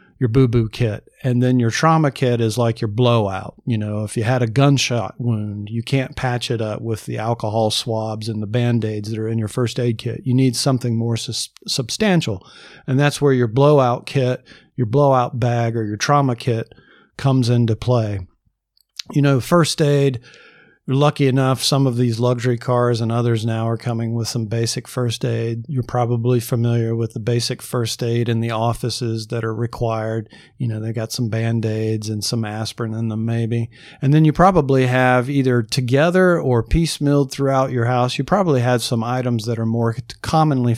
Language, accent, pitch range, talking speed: English, American, 115-135 Hz, 190 wpm